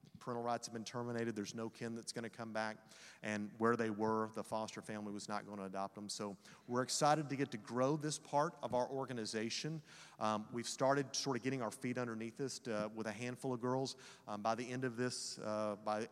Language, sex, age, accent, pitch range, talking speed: English, male, 40-59, American, 110-130 Hz, 235 wpm